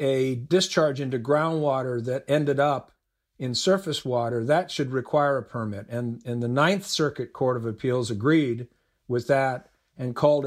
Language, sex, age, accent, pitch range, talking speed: English, male, 50-69, American, 120-155 Hz, 160 wpm